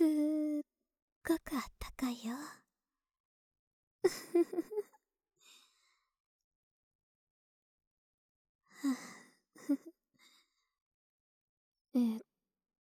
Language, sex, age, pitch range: Japanese, male, 20-39, 235-320 Hz